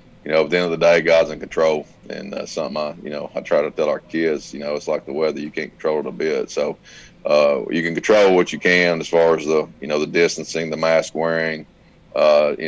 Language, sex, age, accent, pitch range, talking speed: English, male, 30-49, American, 80-85 Hz, 275 wpm